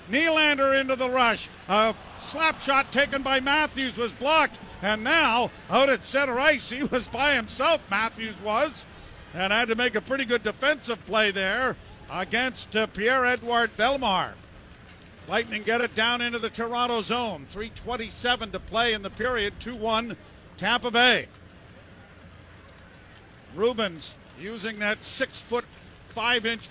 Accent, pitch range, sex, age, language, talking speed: American, 215-270 Hz, male, 50-69, English, 135 wpm